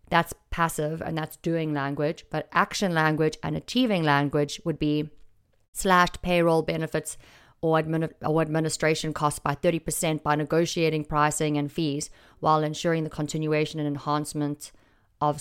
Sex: female